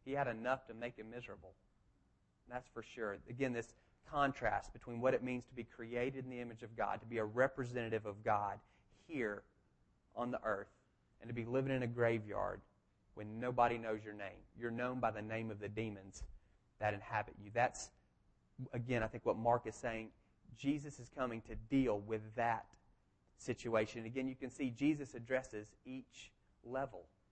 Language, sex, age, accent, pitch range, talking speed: English, male, 30-49, American, 110-130 Hz, 180 wpm